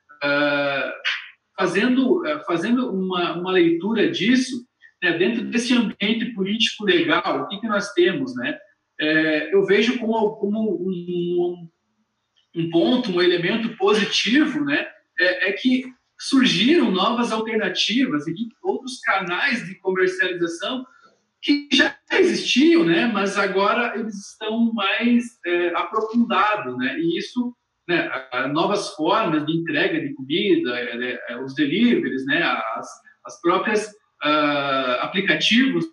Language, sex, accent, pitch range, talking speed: Portuguese, male, Brazilian, 180-255 Hz, 115 wpm